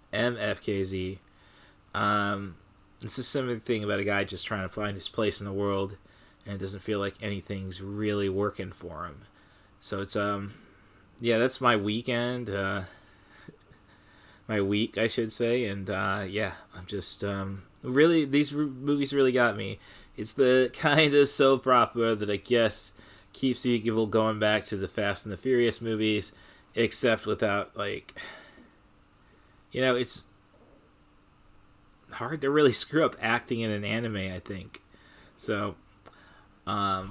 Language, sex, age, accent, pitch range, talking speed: English, male, 20-39, American, 100-120 Hz, 150 wpm